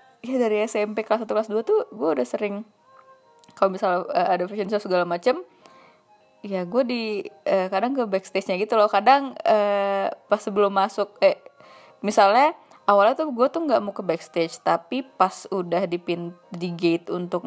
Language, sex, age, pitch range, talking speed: Indonesian, female, 20-39, 195-265 Hz, 175 wpm